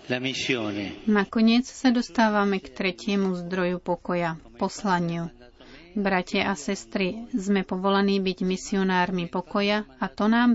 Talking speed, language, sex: 110 wpm, Slovak, female